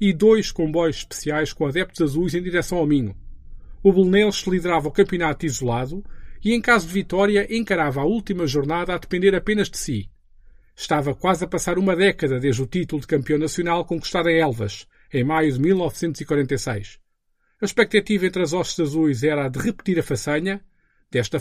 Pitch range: 145-195 Hz